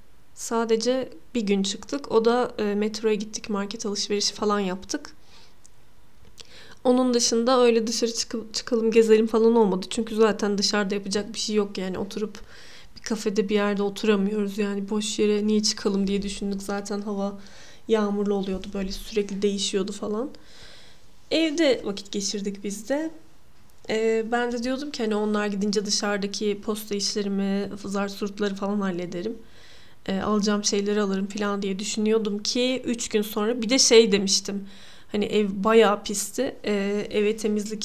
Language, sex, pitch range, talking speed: Turkish, female, 205-230 Hz, 145 wpm